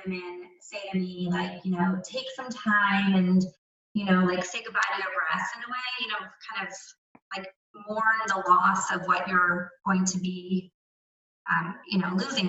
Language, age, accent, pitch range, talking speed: English, 20-39, American, 185-235 Hz, 190 wpm